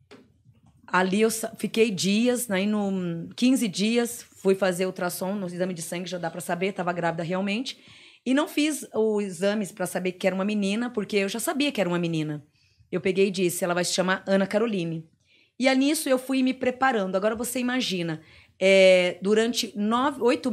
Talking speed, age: 180 wpm, 20-39